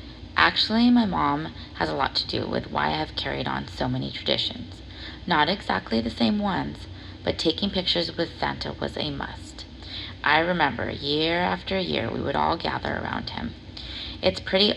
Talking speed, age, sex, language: 175 wpm, 30-49, female, English